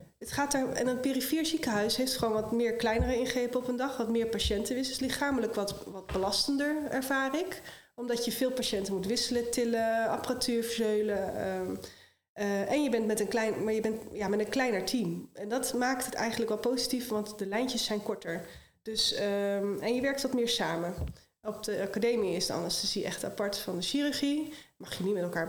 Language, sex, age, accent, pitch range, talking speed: Dutch, female, 20-39, Dutch, 215-260 Hz, 200 wpm